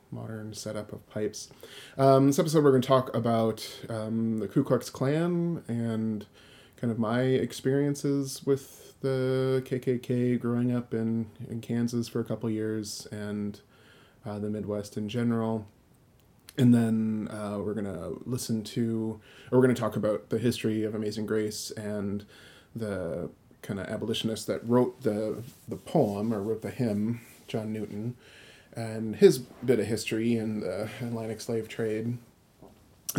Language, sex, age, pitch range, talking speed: English, male, 20-39, 110-130 Hz, 155 wpm